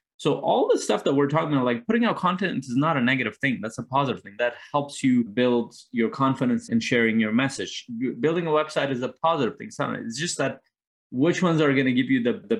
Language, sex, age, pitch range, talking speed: English, male, 20-39, 115-150 Hz, 245 wpm